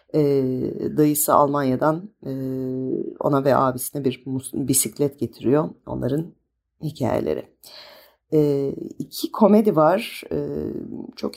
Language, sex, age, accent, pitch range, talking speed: Turkish, female, 40-59, native, 135-180 Hz, 75 wpm